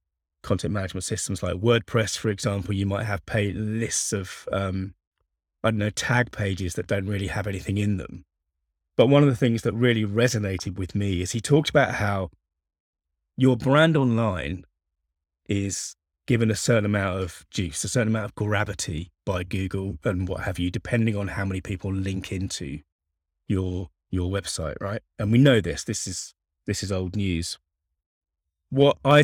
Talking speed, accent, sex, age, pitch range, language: 175 wpm, British, male, 20-39, 80-110 Hz, English